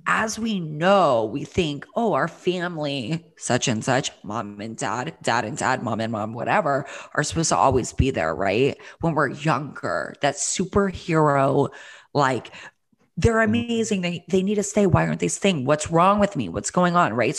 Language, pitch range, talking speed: English, 130-175 Hz, 185 wpm